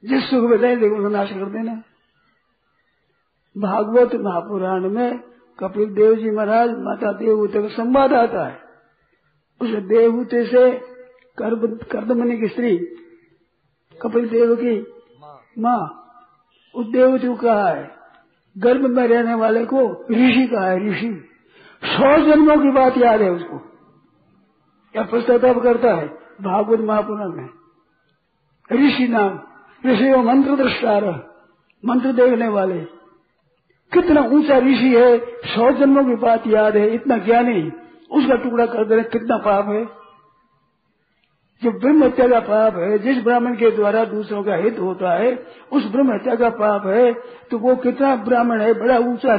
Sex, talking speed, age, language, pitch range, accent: male, 135 wpm, 50-69, Hindi, 210-250 Hz, native